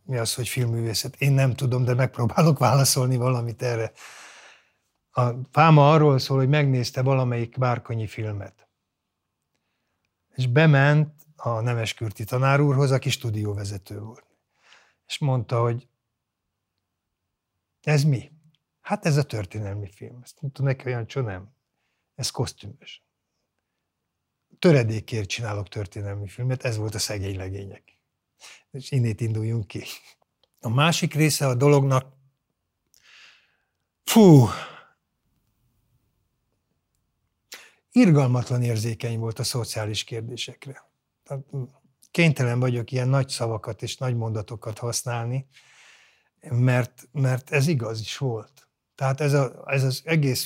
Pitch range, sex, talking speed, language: 115-135 Hz, male, 110 wpm, Hungarian